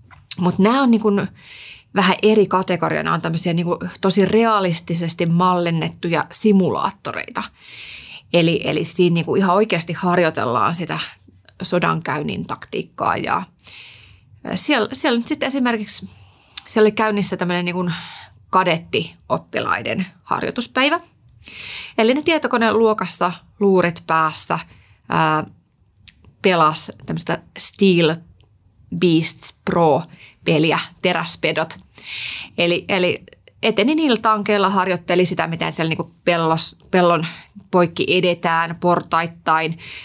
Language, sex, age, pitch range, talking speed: Finnish, female, 30-49, 165-200 Hz, 95 wpm